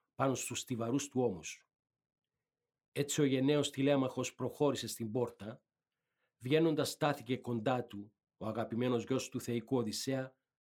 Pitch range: 125-145 Hz